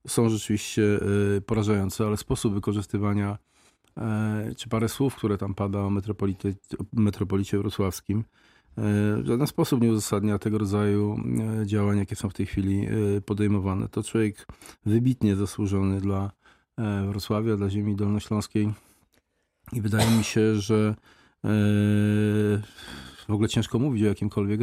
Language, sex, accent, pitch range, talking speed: Polish, male, native, 100-110 Hz, 125 wpm